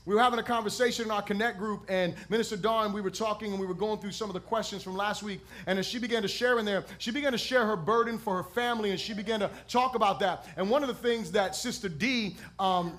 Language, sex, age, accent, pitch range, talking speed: English, male, 30-49, American, 185-235 Hz, 275 wpm